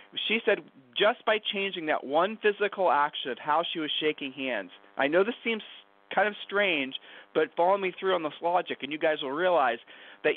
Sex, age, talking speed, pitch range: male, 40-59, 205 wpm, 145-190 Hz